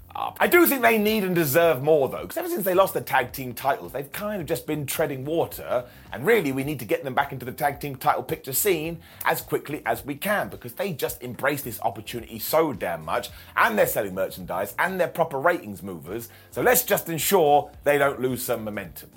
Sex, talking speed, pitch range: male, 225 wpm, 130-190 Hz